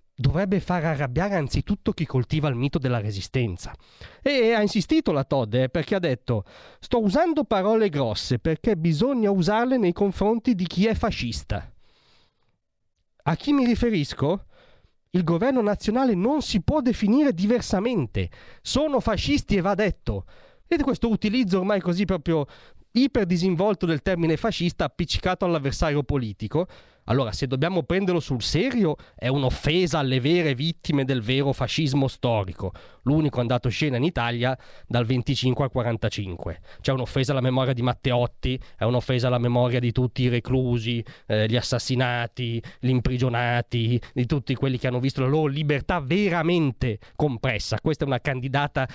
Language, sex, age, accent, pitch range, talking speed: Italian, male, 30-49, native, 125-190 Hz, 150 wpm